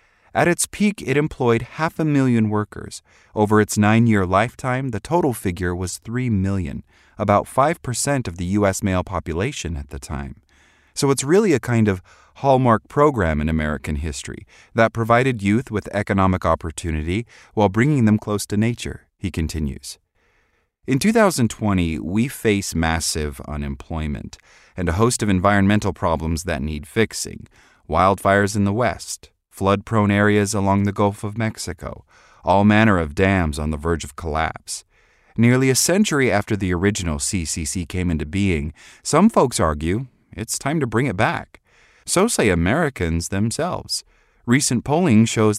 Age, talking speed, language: 30-49, 150 wpm, English